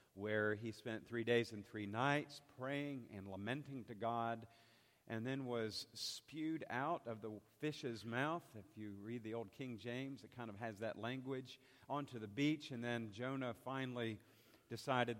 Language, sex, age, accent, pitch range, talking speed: English, male, 50-69, American, 115-140 Hz, 170 wpm